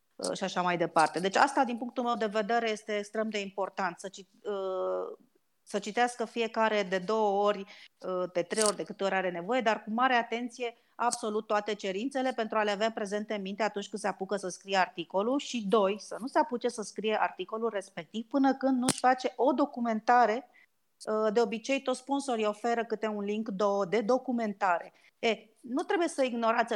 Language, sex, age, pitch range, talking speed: Romanian, female, 30-49, 195-245 Hz, 195 wpm